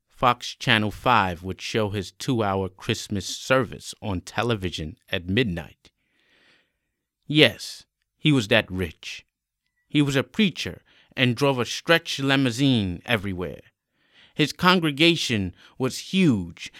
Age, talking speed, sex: 30-49, 115 wpm, male